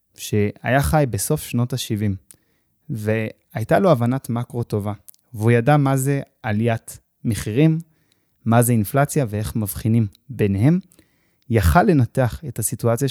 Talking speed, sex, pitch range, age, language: 120 wpm, male, 110-140 Hz, 20-39, Hebrew